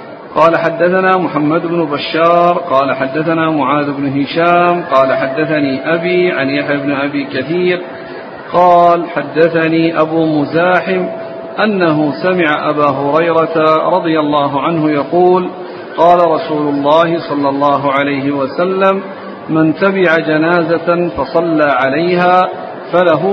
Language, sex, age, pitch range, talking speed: Arabic, male, 50-69, 150-175 Hz, 110 wpm